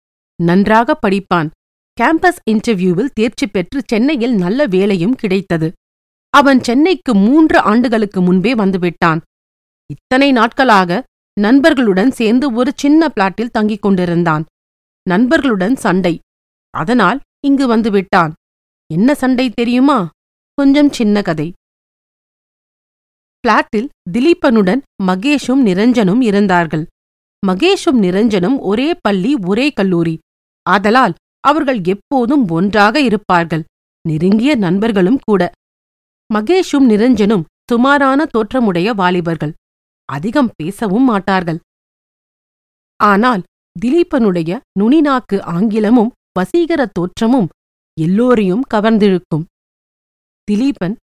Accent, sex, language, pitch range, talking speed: native, female, Tamil, 180-255 Hz, 80 wpm